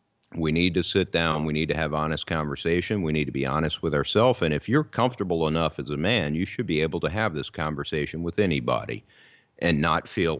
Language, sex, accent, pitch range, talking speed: English, male, American, 75-90 Hz, 225 wpm